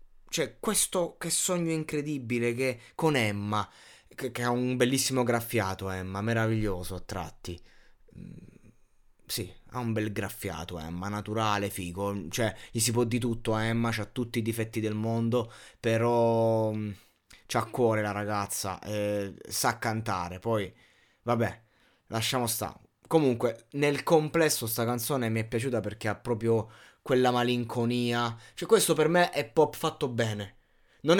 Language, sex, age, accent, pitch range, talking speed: Italian, male, 20-39, native, 110-135 Hz, 140 wpm